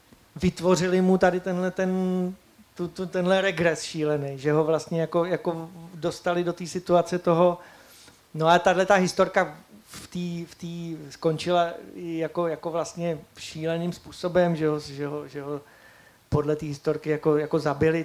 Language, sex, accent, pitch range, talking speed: Czech, male, native, 160-180 Hz, 155 wpm